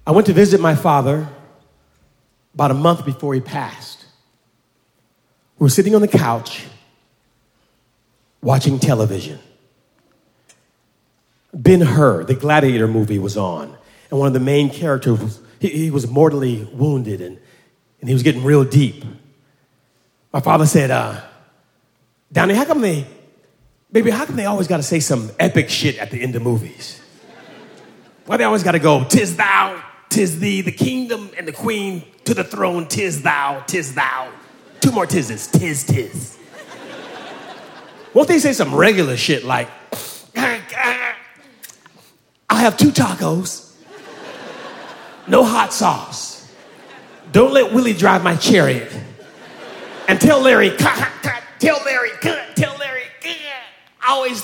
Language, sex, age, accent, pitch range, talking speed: English, male, 30-49, American, 125-195 Hz, 135 wpm